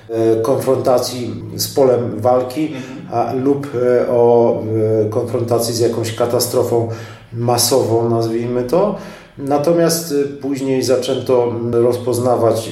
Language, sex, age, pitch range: Polish, male, 40-59, 115-140 Hz